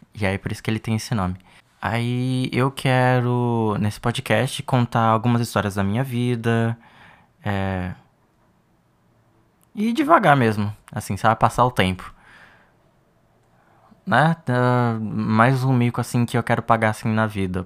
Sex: male